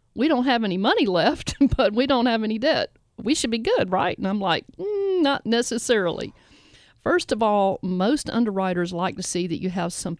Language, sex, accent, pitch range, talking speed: English, female, American, 175-245 Hz, 205 wpm